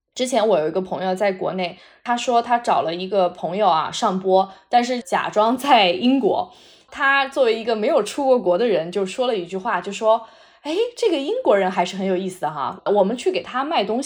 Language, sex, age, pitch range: Chinese, female, 20-39, 200-305 Hz